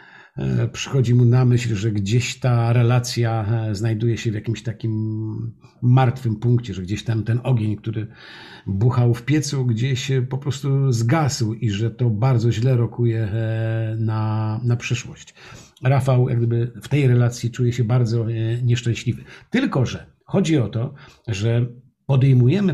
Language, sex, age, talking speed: Polish, male, 50-69, 135 wpm